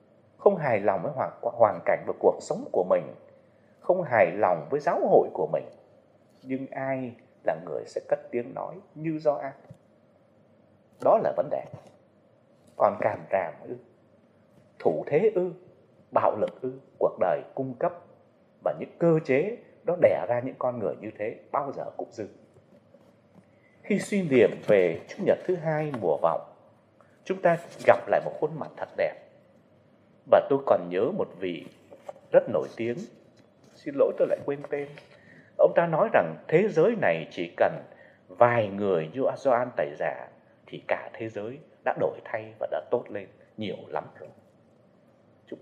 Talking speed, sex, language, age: 165 wpm, male, Vietnamese, 30-49